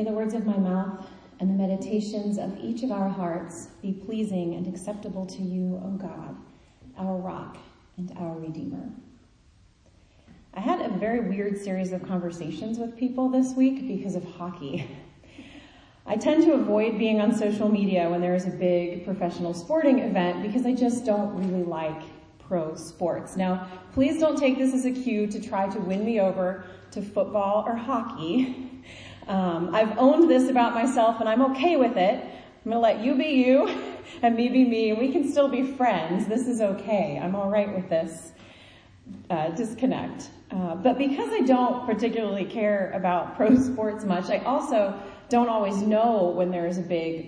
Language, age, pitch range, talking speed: English, 30-49, 180-245 Hz, 180 wpm